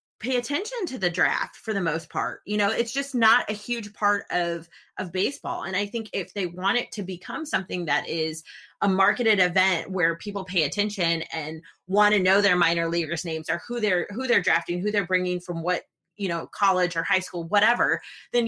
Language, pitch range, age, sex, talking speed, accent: English, 180-220 Hz, 30-49, female, 215 wpm, American